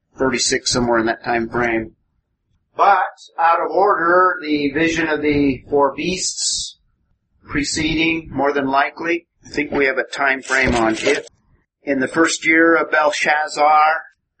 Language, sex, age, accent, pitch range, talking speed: English, male, 50-69, American, 140-170 Hz, 145 wpm